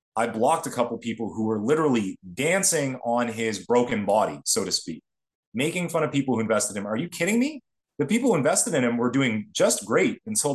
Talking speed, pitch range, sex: 230 wpm, 100-140 Hz, male